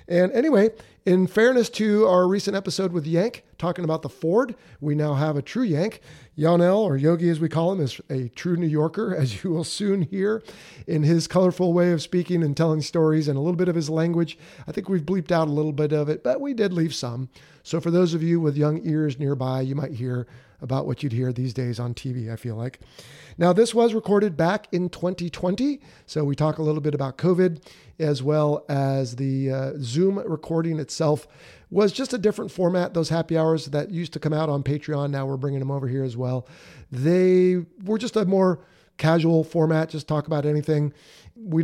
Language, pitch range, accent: English, 140-180 Hz, American